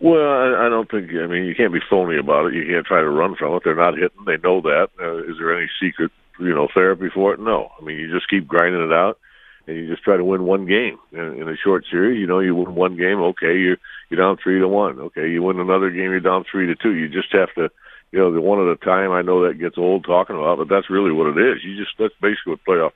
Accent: American